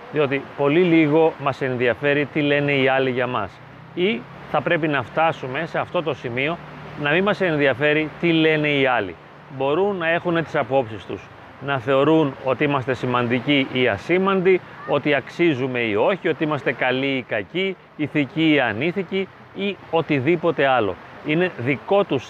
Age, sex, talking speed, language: 30-49, male, 160 wpm, Greek